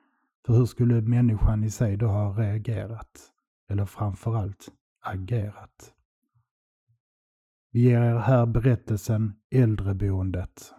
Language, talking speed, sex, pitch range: Swedish, 100 wpm, male, 95-115 Hz